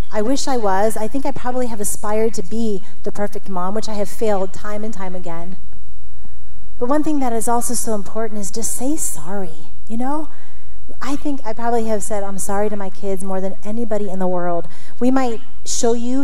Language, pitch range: English, 200-280 Hz